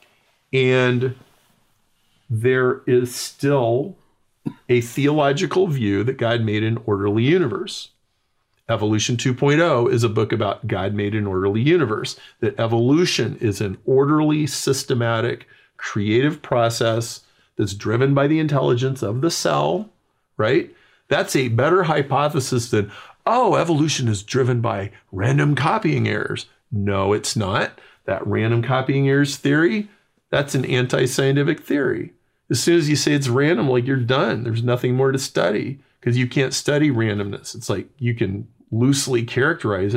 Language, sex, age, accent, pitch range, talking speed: English, male, 50-69, American, 115-145 Hz, 140 wpm